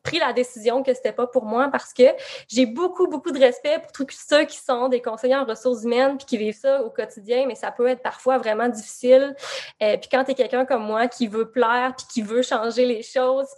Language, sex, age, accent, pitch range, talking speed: French, female, 20-39, Canadian, 230-260 Hz, 245 wpm